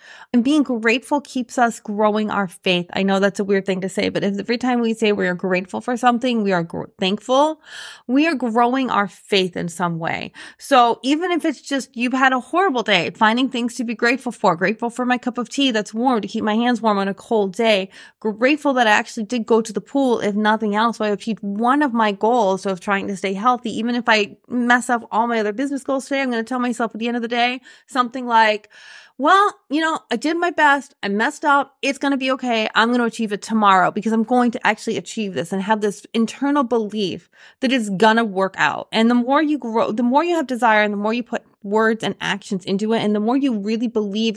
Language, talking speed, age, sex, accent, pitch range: English, 240 wpm, 20-39, female, American, 210-260 Hz